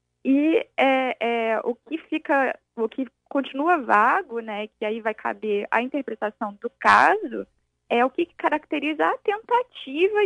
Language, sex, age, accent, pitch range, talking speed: Portuguese, female, 10-29, Brazilian, 220-270 Hz, 145 wpm